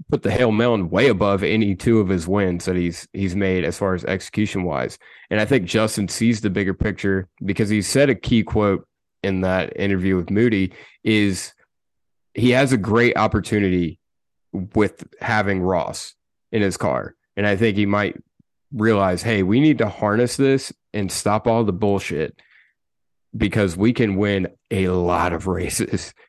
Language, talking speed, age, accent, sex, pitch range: English, 175 wpm, 30-49, American, male, 95-110 Hz